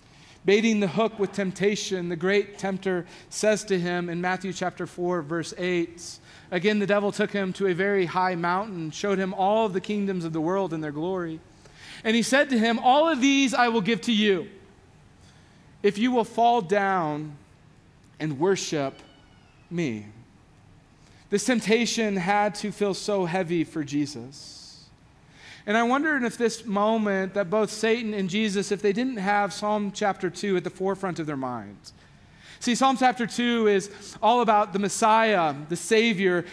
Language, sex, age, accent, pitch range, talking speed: English, male, 30-49, American, 180-225 Hz, 170 wpm